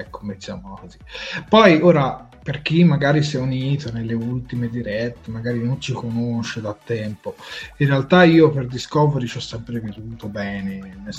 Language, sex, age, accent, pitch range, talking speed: Italian, male, 20-39, native, 120-155 Hz, 165 wpm